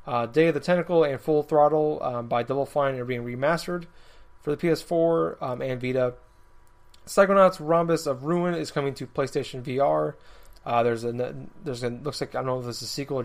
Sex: male